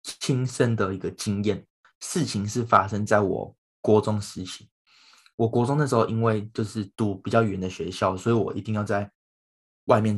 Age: 20-39